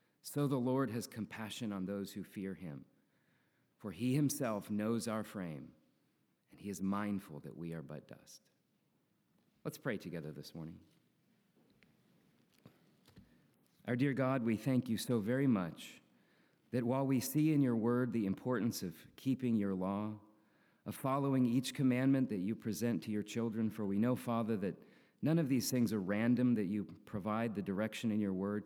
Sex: male